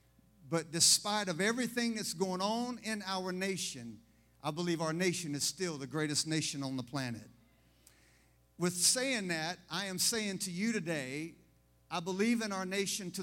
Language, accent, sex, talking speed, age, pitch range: English, American, male, 170 wpm, 50-69, 130-205 Hz